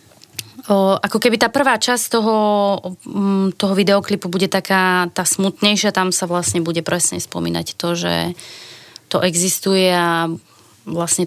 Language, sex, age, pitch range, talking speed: Slovak, female, 20-39, 170-195 Hz, 135 wpm